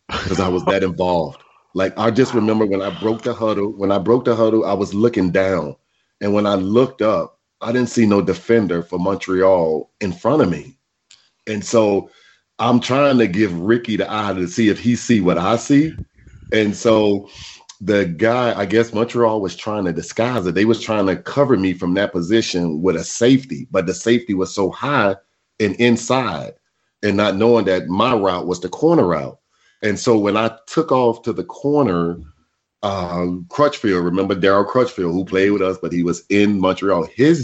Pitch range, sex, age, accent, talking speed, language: 90-115 Hz, male, 40-59, American, 195 wpm, English